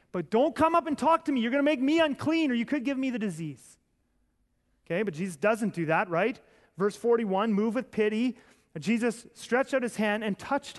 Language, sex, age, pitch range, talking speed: English, male, 30-49, 205-280 Hz, 225 wpm